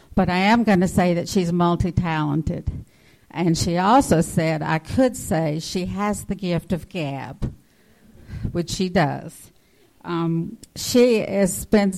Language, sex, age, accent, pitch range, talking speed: English, female, 50-69, American, 155-180 Hz, 145 wpm